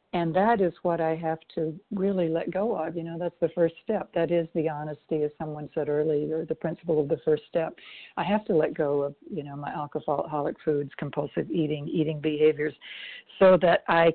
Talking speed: 210 wpm